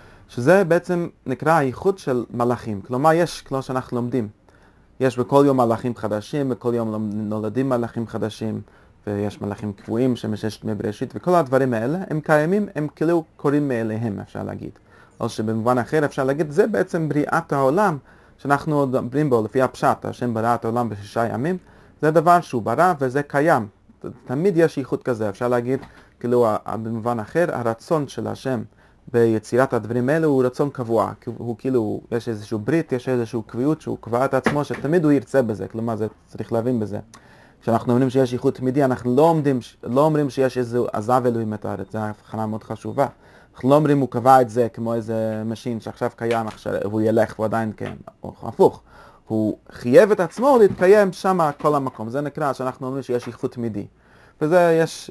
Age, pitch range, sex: 30-49, 110-145 Hz, male